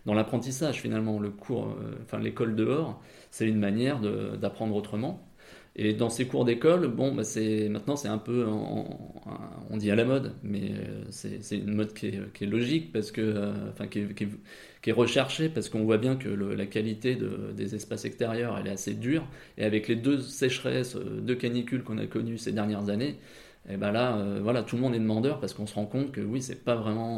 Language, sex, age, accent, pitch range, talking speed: French, male, 20-39, French, 105-130 Hz, 225 wpm